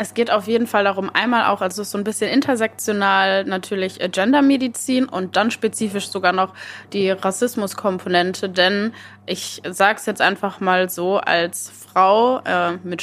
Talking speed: 155 wpm